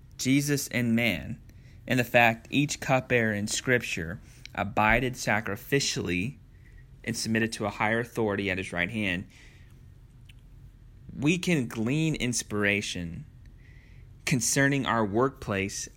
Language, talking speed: English, 110 wpm